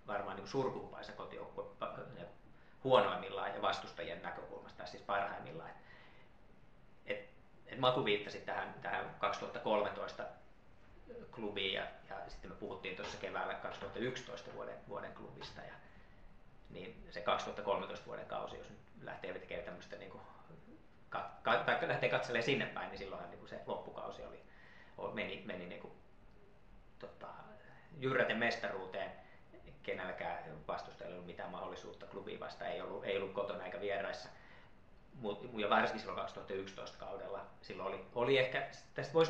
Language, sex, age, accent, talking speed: Finnish, male, 30-49, native, 130 wpm